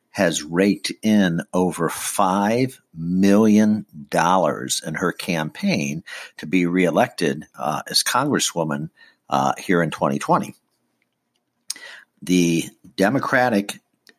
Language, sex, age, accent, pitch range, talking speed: English, male, 60-79, American, 90-105 Hz, 95 wpm